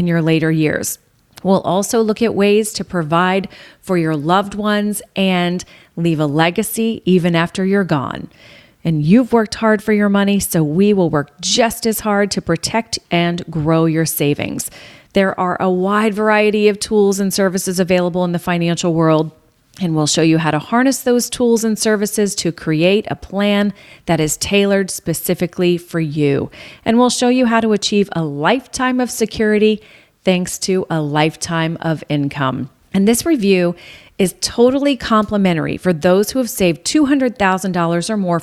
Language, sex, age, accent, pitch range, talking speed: English, female, 40-59, American, 165-215 Hz, 170 wpm